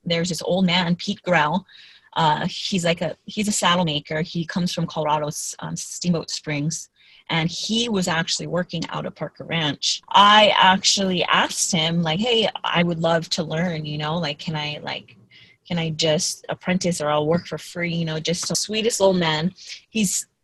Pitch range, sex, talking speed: 160-195 Hz, female, 190 wpm